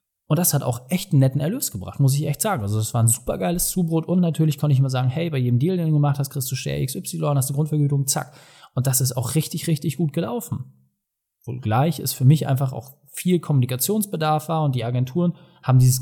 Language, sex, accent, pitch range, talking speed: German, male, German, 125-150 Hz, 245 wpm